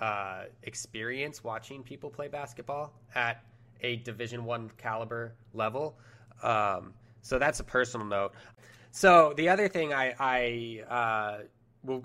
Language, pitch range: English, 115-130 Hz